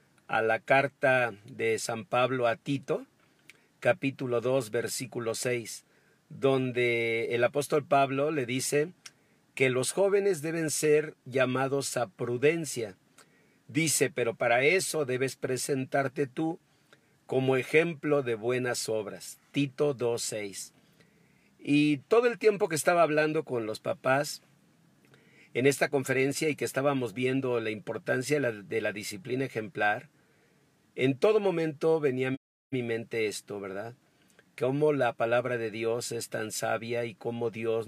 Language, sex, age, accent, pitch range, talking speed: Spanish, male, 50-69, Mexican, 115-145 Hz, 135 wpm